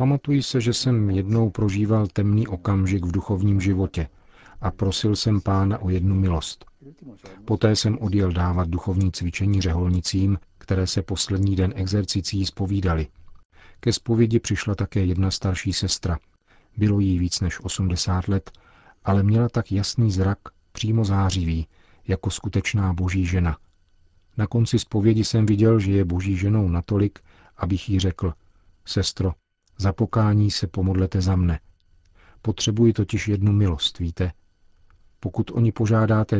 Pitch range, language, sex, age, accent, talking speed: 90-105 Hz, Czech, male, 40-59, native, 135 wpm